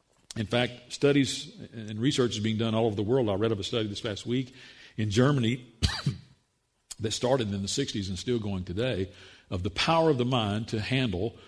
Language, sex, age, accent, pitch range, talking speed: English, male, 50-69, American, 105-125 Hz, 205 wpm